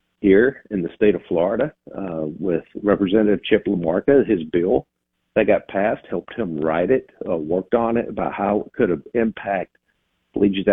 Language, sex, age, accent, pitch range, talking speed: English, male, 50-69, American, 85-115 Hz, 170 wpm